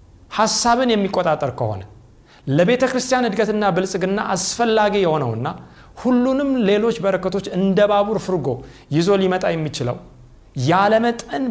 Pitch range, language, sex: 120-195 Hz, Amharic, male